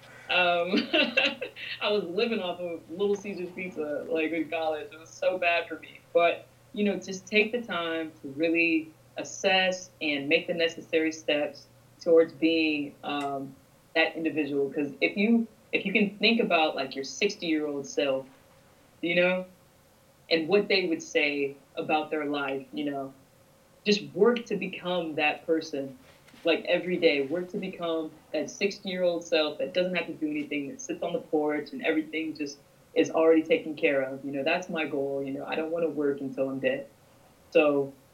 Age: 20-39